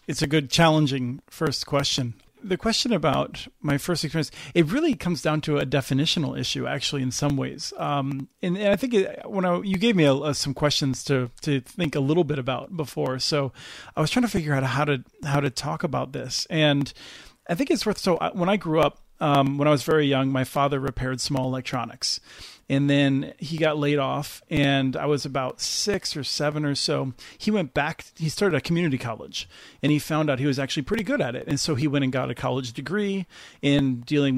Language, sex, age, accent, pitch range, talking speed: English, male, 40-59, American, 130-160 Hz, 220 wpm